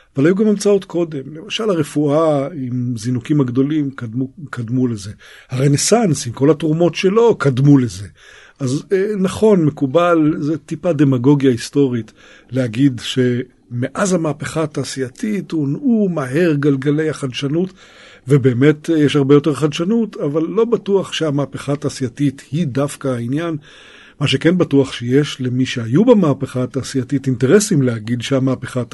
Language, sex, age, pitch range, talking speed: Hebrew, male, 50-69, 125-150 Hz, 120 wpm